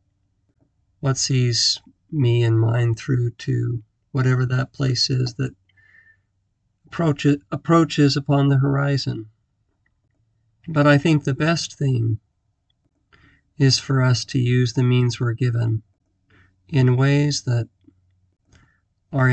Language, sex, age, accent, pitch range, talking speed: English, male, 40-59, American, 110-130 Hz, 110 wpm